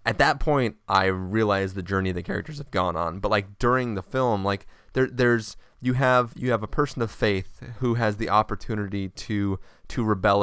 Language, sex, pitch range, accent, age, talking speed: English, male, 95-110 Hz, American, 20-39, 200 wpm